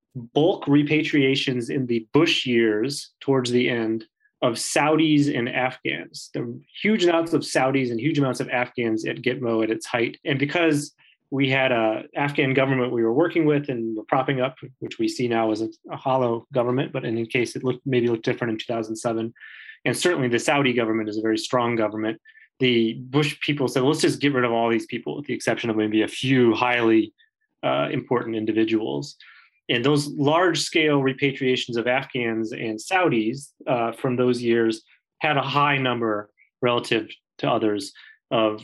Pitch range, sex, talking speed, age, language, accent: 115-145 Hz, male, 180 wpm, 30-49, English, American